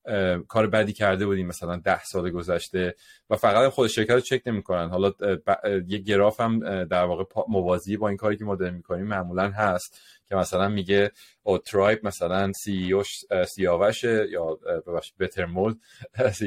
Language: English